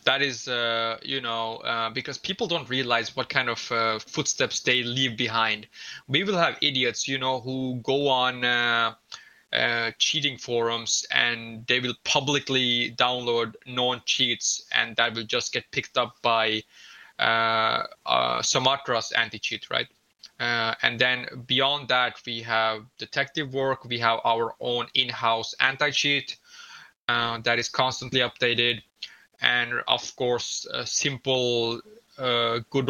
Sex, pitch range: male, 115-130 Hz